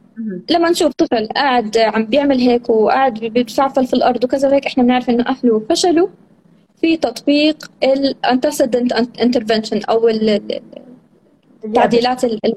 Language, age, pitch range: Arabic, 20-39, 215-270 Hz